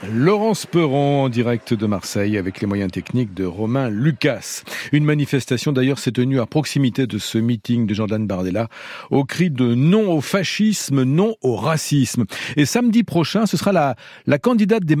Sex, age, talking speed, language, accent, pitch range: male, 50-69, 175 wpm, French, French, 120-160 Hz